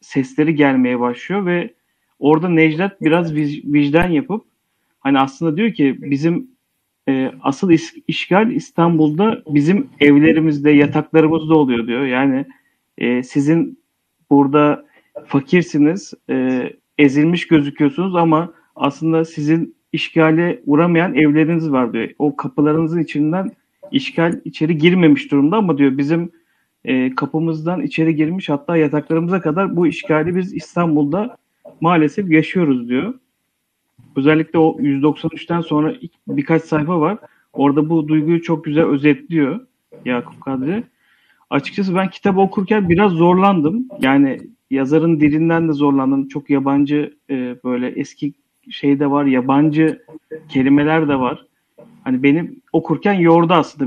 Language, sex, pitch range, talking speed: Turkish, male, 145-170 Hz, 115 wpm